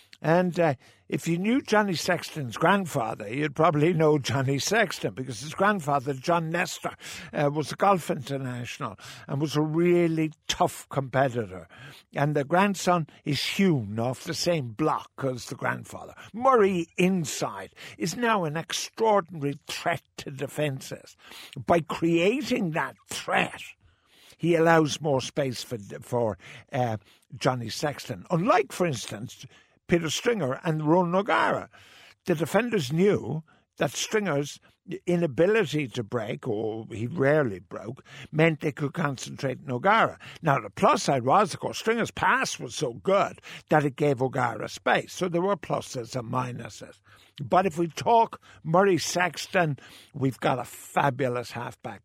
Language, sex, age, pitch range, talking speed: English, male, 60-79, 130-175 Hz, 140 wpm